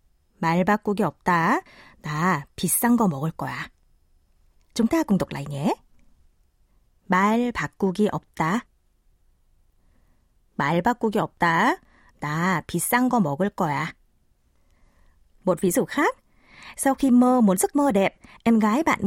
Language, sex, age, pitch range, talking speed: Vietnamese, female, 20-39, 165-230 Hz, 105 wpm